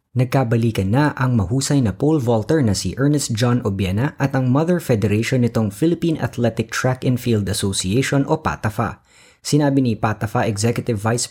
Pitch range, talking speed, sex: 110-135 Hz, 160 wpm, female